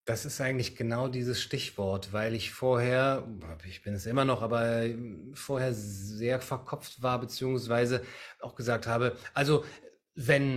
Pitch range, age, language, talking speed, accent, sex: 110-135 Hz, 30-49, German, 140 wpm, German, male